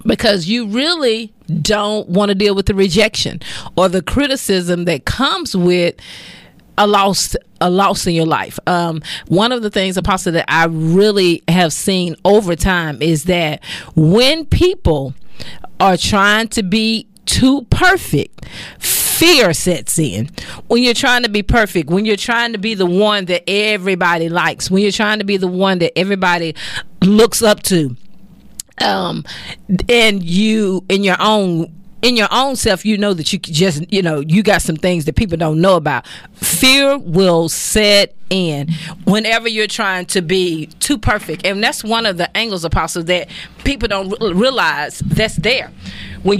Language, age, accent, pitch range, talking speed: English, 40-59, American, 175-215 Hz, 165 wpm